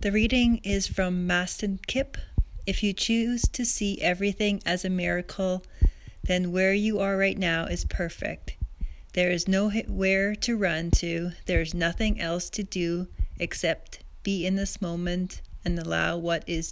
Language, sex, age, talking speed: English, female, 30-49, 155 wpm